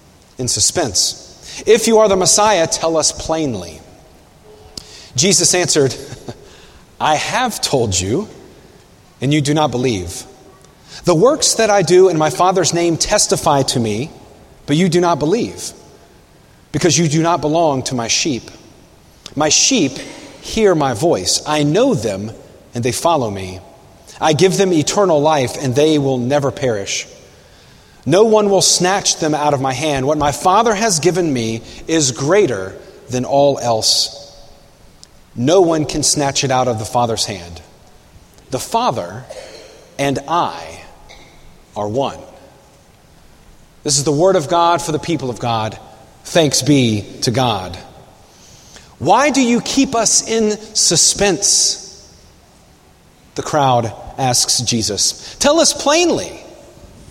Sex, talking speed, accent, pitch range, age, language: male, 140 wpm, American, 125-180 Hz, 40-59, English